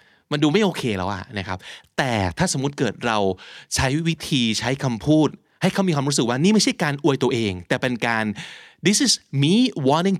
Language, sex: Thai, male